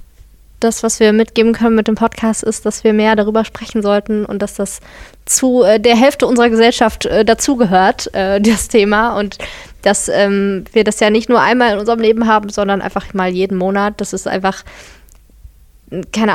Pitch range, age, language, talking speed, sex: 195-225 Hz, 20-39, German, 175 wpm, female